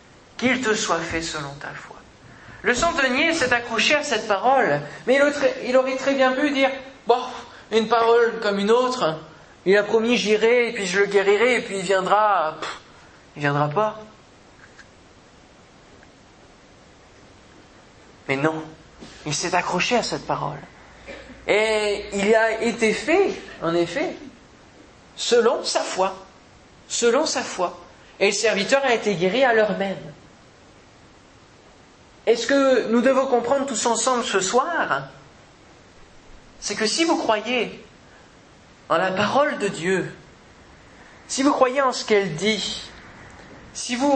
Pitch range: 185-255 Hz